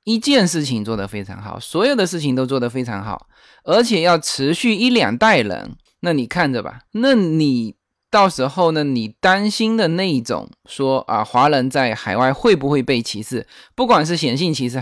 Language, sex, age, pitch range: Chinese, male, 20-39, 125-185 Hz